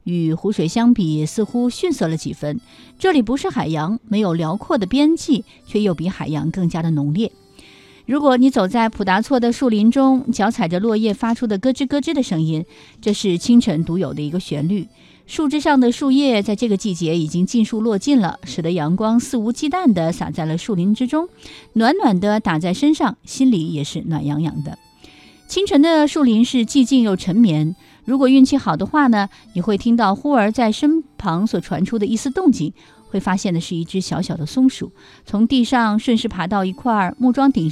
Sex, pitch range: female, 175-250 Hz